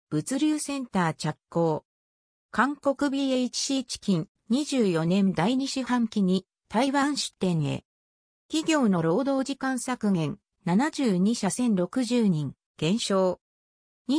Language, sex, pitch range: Japanese, female, 170-265 Hz